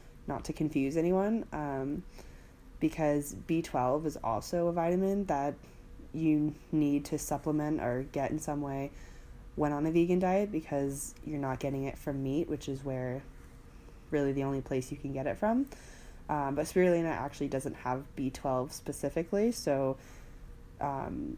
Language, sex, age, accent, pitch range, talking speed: English, female, 20-39, American, 130-150 Hz, 155 wpm